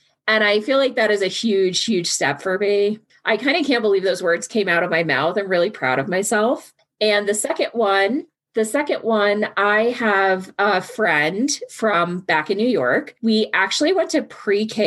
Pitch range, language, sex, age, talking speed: 185-235 Hz, English, female, 30-49, 200 wpm